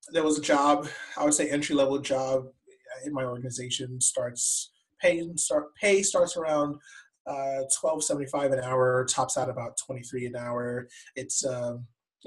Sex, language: male, English